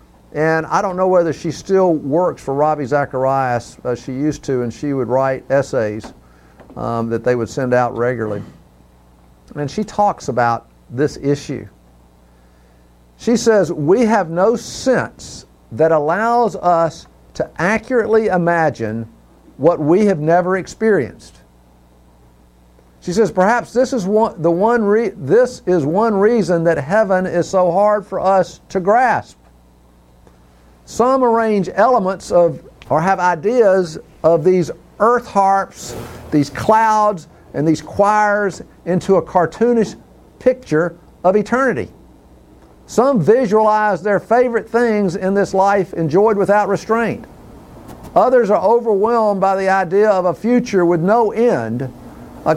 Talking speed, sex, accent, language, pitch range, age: 130 wpm, male, American, English, 130-215 Hz, 50-69